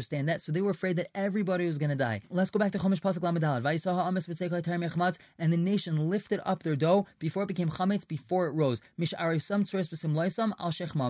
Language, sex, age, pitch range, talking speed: English, male, 20-39, 155-190 Hz, 170 wpm